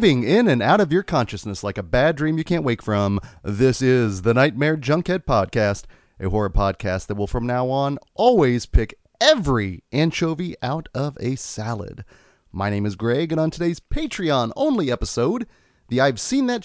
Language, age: English, 30-49